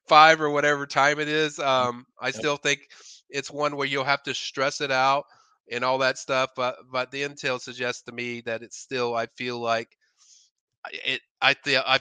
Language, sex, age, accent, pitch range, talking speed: English, male, 30-49, American, 120-135 Hz, 170 wpm